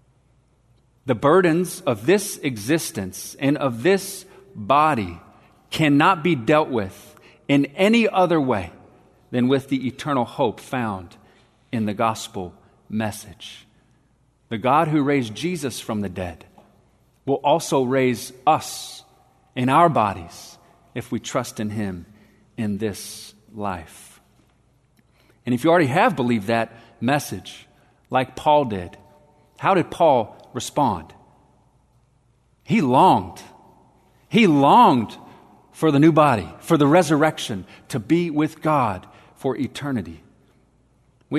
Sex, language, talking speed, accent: male, English, 120 wpm, American